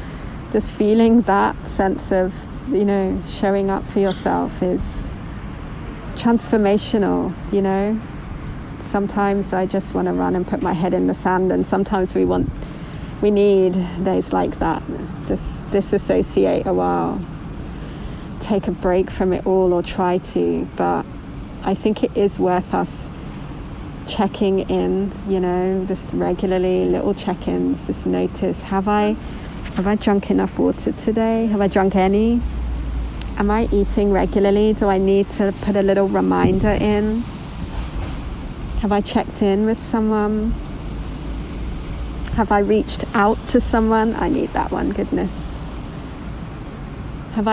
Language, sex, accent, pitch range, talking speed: English, female, British, 165-210 Hz, 140 wpm